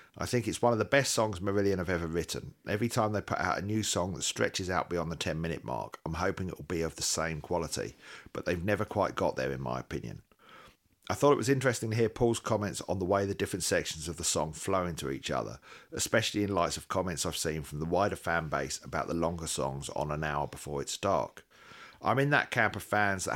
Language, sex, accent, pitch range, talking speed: English, male, British, 80-100 Hz, 250 wpm